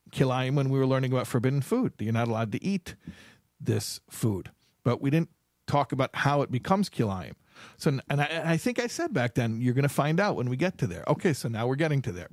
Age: 50-69